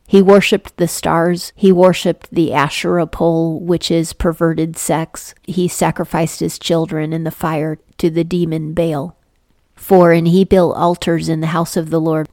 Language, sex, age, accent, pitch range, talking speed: English, female, 40-59, American, 160-180 Hz, 170 wpm